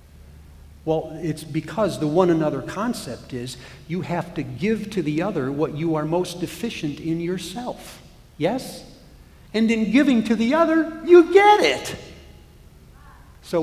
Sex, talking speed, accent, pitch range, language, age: male, 145 wpm, American, 140-185 Hz, English, 50-69